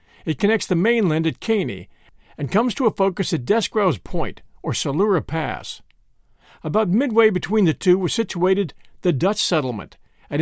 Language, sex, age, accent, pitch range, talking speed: English, male, 50-69, American, 160-210 Hz, 160 wpm